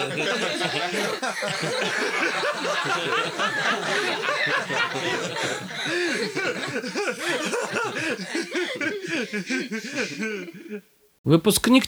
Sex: male